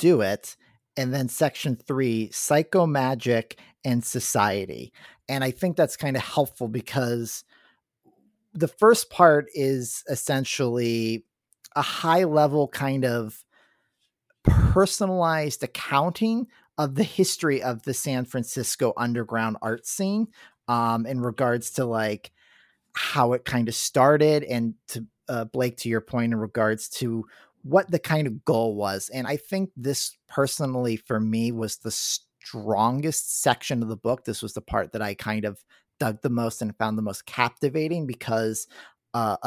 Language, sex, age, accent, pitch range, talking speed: English, male, 40-59, American, 115-145 Hz, 150 wpm